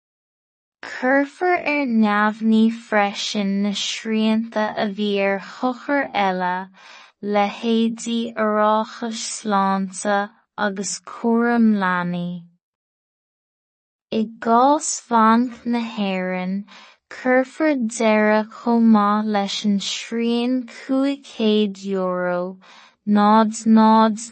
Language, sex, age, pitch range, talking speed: English, female, 20-39, 195-230 Hz, 55 wpm